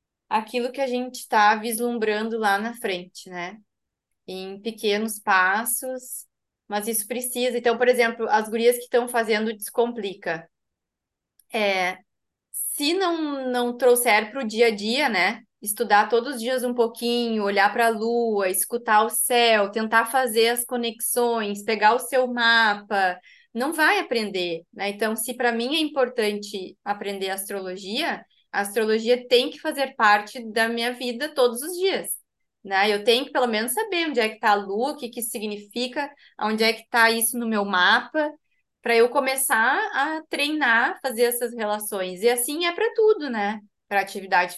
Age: 20-39